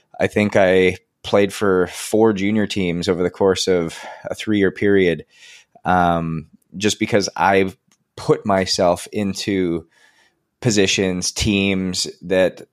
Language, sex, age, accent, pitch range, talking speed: English, male, 20-39, American, 85-100 Hz, 120 wpm